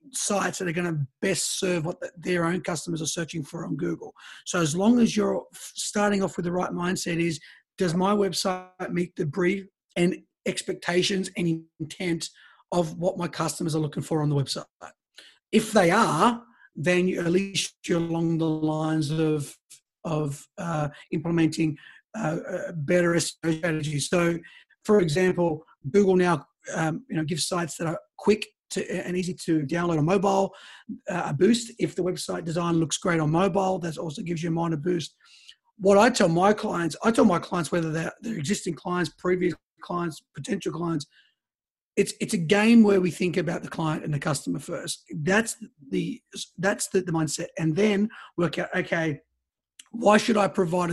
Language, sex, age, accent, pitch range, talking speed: English, male, 30-49, Australian, 160-195 Hz, 175 wpm